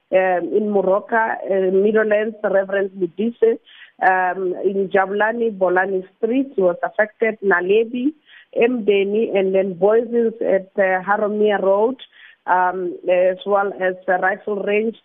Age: 30-49